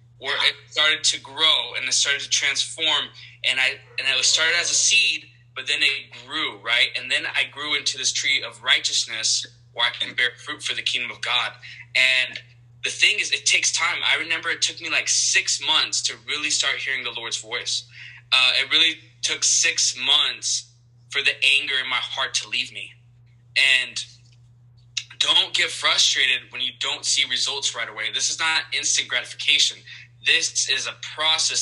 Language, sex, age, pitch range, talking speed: English, male, 20-39, 120-130 Hz, 190 wpm